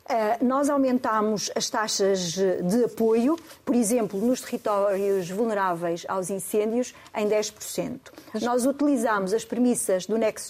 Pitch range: 200-245 Hz